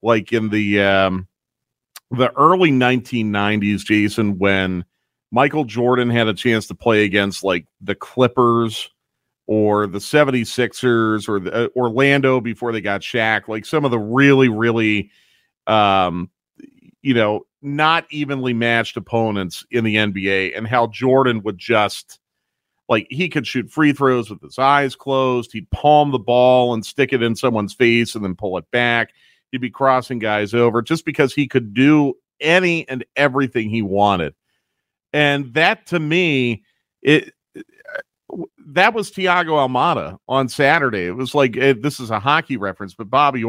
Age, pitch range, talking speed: 40-59, 105-135 Hz, 155 wpm